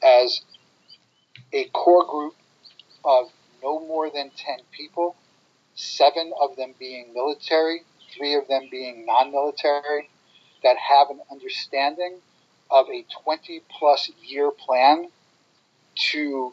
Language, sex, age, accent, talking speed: English, male, 40-59, American, 110 wpm